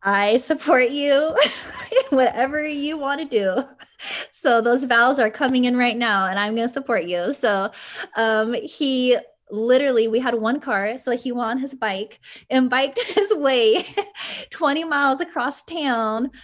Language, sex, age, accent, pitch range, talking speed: English, female, 20-39, American, 200-260 Hz, 160 wpm